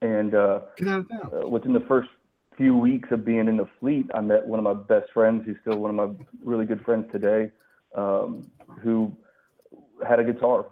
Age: 30-49